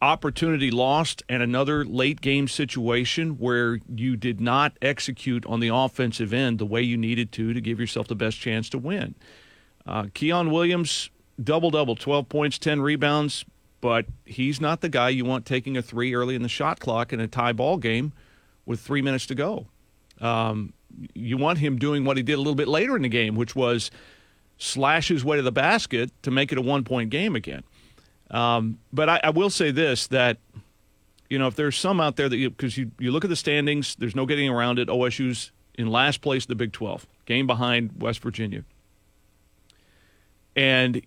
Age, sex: 40-59, male